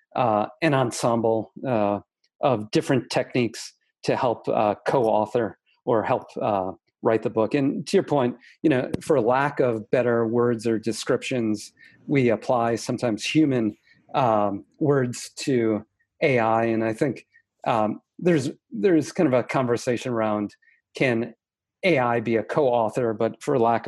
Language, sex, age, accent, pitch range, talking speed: English, male, 40-59, American, 110-140 Hz, 145 wpm